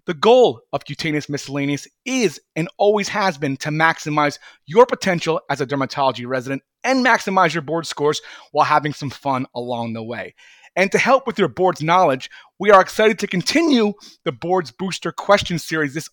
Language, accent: English, American